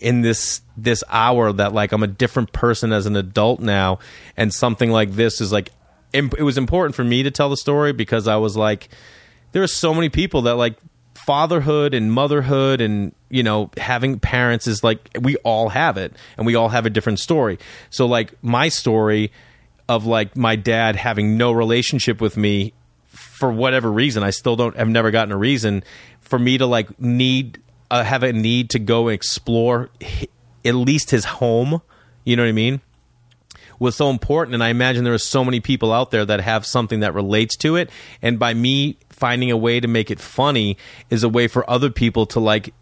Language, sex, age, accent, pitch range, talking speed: English, male, 30-49, American, 110-125 Hz, 205 wpm